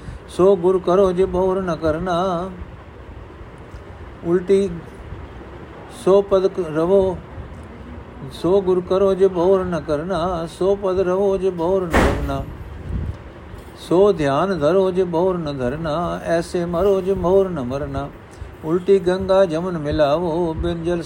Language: Punjabi